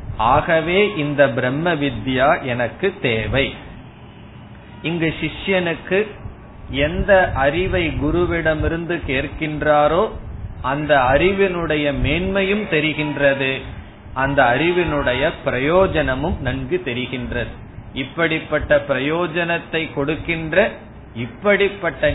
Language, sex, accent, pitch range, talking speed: Tamil, male, native, 120-165 Hz, 50 wpm